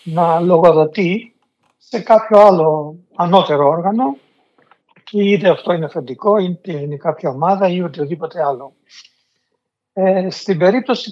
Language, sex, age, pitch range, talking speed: Greek, male, 60-79, 155-205 Hz, 115 wpm